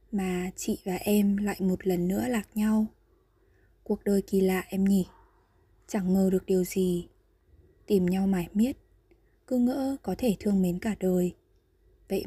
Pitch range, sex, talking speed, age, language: 185-220 Hz, female, 165 wpm, 20-39, Vietnamese